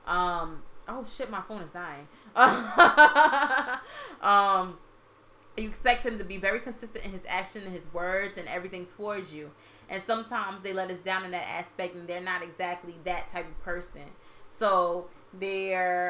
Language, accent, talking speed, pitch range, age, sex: English, American, 165 wpm, 170-205 Hz, 20-39, female